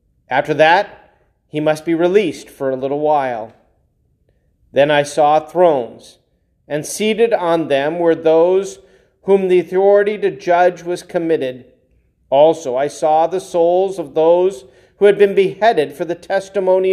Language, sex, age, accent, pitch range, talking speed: English, male, 40-59, American, 140-190 Hz, 145 wpm